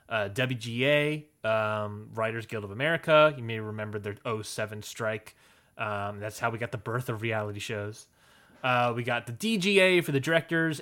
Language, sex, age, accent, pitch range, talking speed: English, male, 20-39, American, 110-145 Hz, 170 wpm